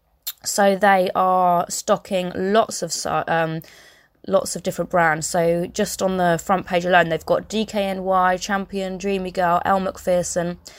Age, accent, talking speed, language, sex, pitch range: 20-39, British, 145 wpm, English, female, 160-195 Hz